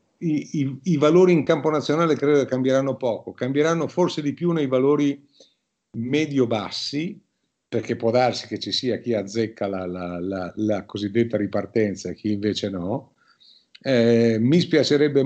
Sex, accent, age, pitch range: male, native, 50-69, 110-135 Hz